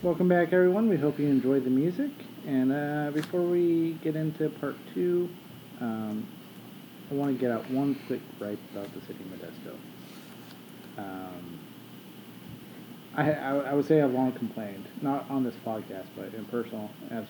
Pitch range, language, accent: 110-140 Hz, English, American